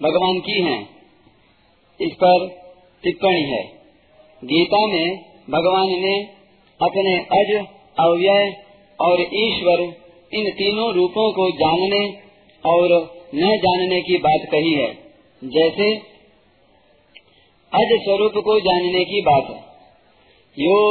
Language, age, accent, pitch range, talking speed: Hindi, 40-59, native, 175-205 Hz, 105 wpm